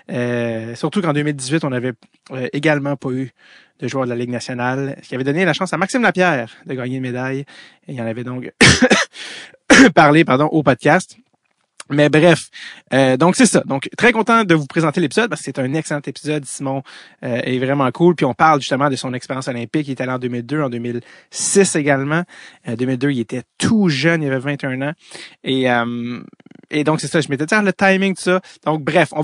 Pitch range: 130-175 Hz